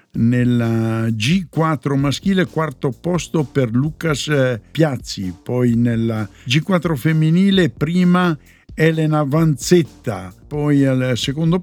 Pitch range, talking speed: 120-155 Hz, 95 wpm